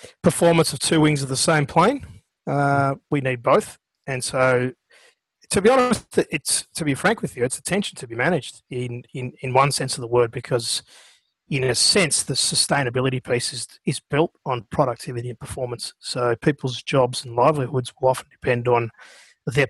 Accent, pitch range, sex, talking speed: Australian, 125-155 Hz, male, 185 wpm